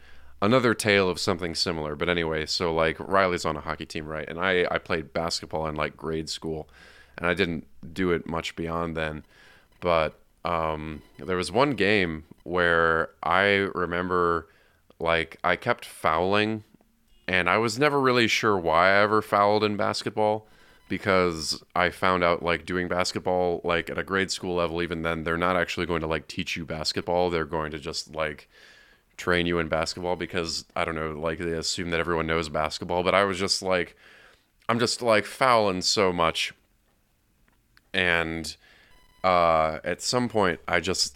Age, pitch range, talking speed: 20-39, 80-90 Hz, 175 wpm